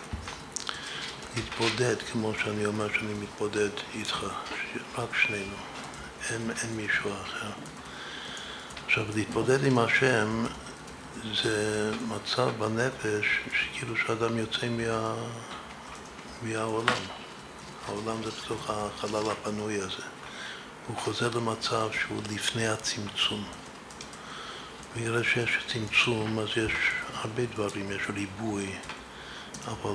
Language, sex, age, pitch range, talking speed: Hebrew, male, 60-79, 105-115 Hz, 95 wpm